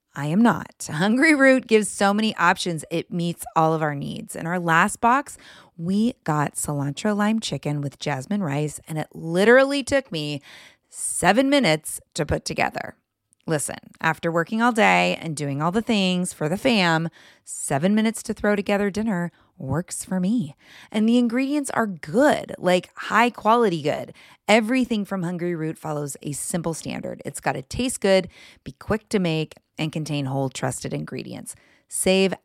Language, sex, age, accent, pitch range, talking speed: English, female, 30-49, American, 155-225 Hz, 165 wpm